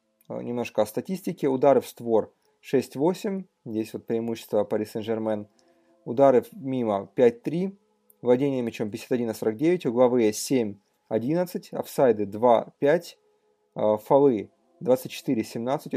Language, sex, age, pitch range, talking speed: Russian, male, 30-49, 110-150 Hz, 90 wpm